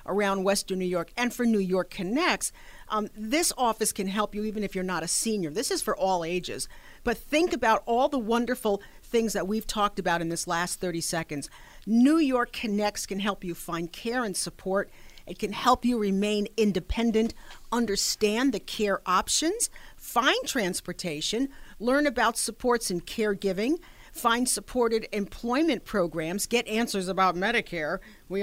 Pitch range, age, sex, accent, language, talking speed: 190-245 Hz, 50-69, female, American, English, 165 wpm